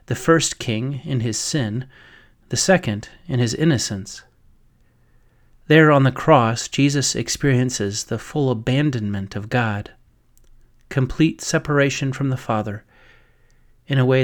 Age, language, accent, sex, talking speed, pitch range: 30-49, English, American, male, 125 wpm, 125-160 Hz